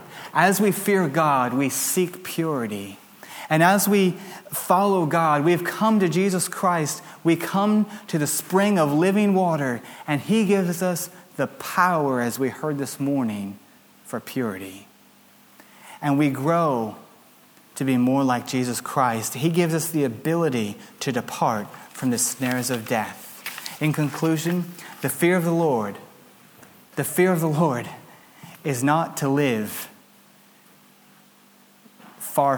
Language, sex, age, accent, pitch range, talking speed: English, male, 30-49, American, 130-175 Hz, 140 wpm